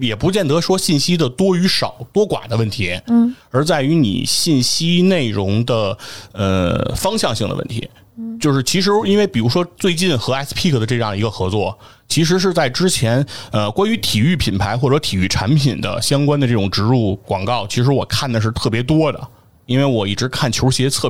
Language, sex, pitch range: Chinese, male, 105-145 Hz